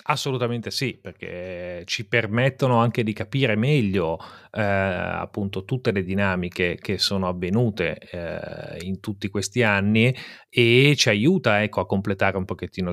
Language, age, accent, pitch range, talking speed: Italian, 30-49, native, 100-120 Hz, 140 wpm